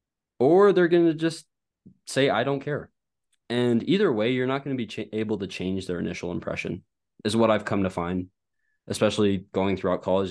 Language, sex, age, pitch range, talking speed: English, male, 20-39, 95-120 Hz, 190 wpm